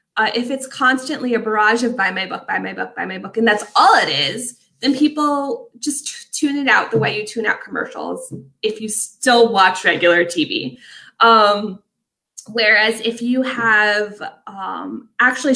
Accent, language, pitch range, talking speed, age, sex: American, English, 210-295 Hz, 175 wpm, 20-39, female